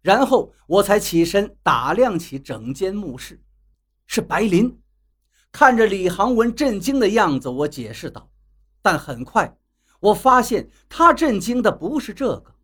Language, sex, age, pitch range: Chinese, male, 50-69, 170-260 Hz